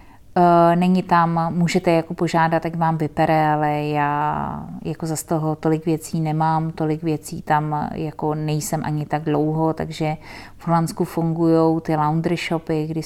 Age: 30-49